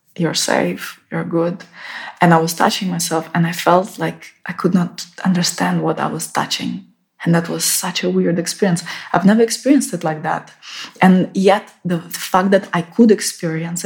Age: 20-39